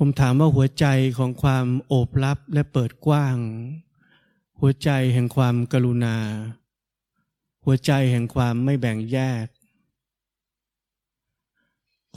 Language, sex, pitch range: Thai, male, 115-140 Hz